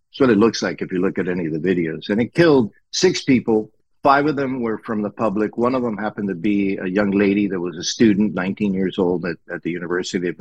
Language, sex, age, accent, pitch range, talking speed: English, male, 50-69, American, 95-115 Hz, 265 wpm